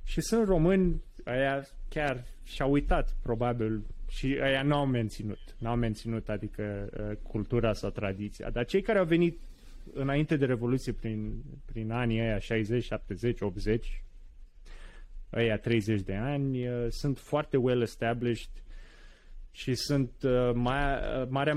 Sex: male